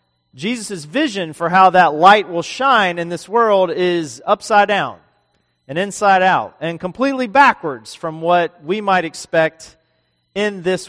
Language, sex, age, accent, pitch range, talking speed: English, male, 40-59, American, 145-195 Hz, 150 wpm